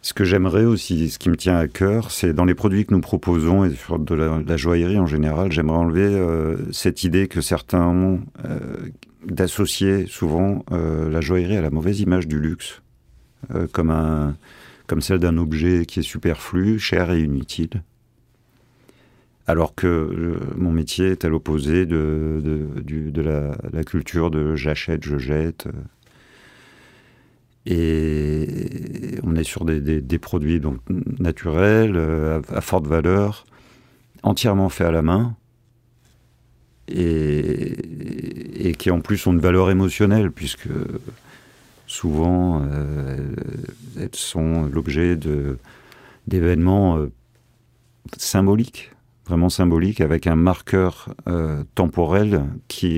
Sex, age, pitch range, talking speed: male, 50-69, 80-100 Hz, 140 wpm